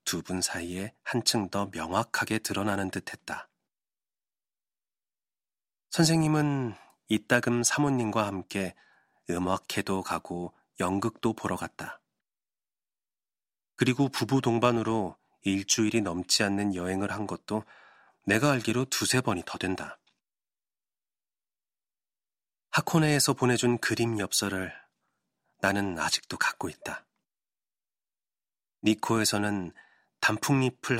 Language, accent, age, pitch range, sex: Korean, native, 30-49, 100-130 Hz, male